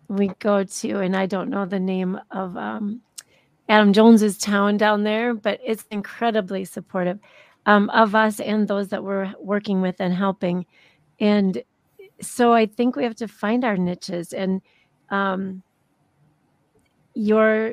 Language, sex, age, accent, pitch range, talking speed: English, female, 40-59, American, 190-225 Hz, 150 wpm